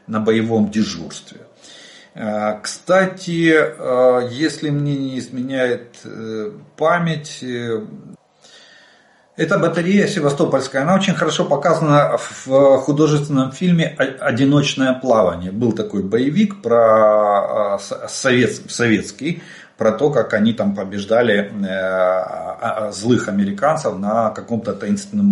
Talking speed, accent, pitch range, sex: 90 wpm, native, 105-160 Hz, male